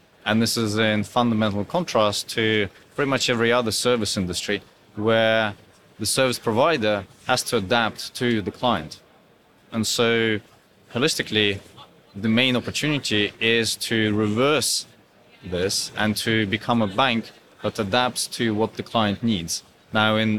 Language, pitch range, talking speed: English, 105-120 Hz, 140 wpm